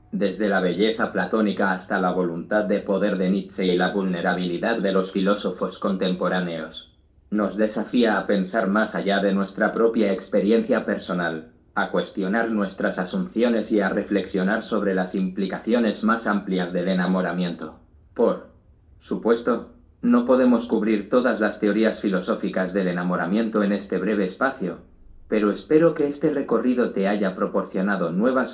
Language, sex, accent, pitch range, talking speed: Spanish, male, Spanish, 95-115 Hz, 140 wpm